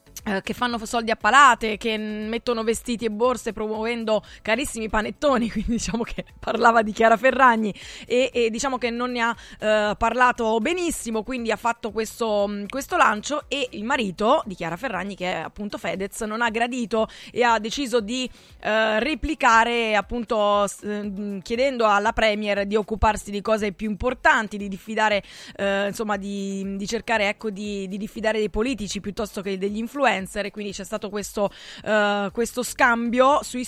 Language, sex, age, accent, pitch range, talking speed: Italian, female, 20-39, native, 200-235 Hz, 160 wpm